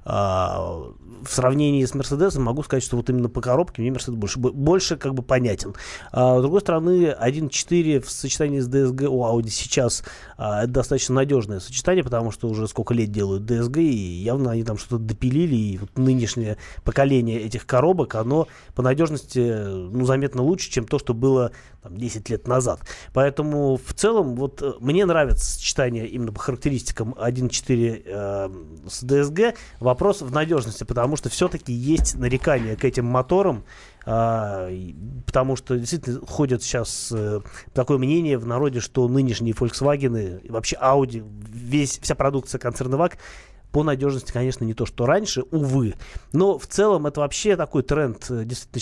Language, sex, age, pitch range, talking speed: Russian, male, 30-49, 115-140 Hz, 165 wpm